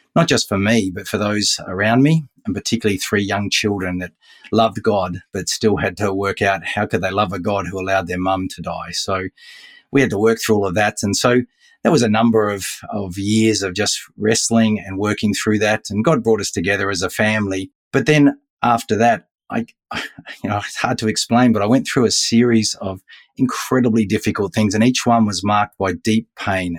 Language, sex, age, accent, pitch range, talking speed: English, male, 30-49, Australian, 95-115 Hz, 215 wpm